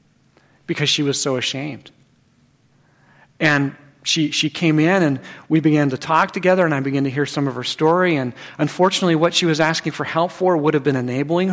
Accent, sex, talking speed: American, male, 200 wpm